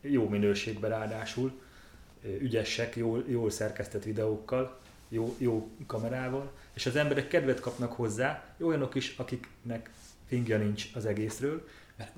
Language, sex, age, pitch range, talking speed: Hungarian, male, 30-49, 105-125 Hz, 125 wpm